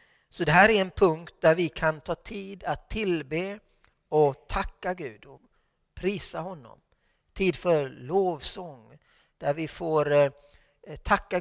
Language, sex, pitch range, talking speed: Swedish, male, 155-185 Hz, 135 wpm